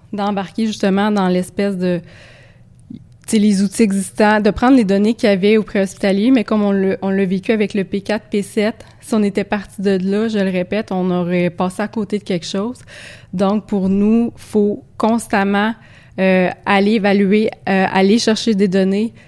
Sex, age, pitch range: female, 20-39, 190-215 Hz